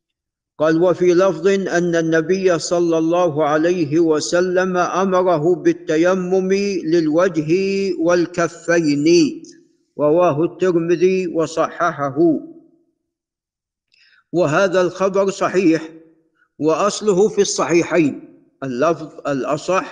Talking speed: 70 wpm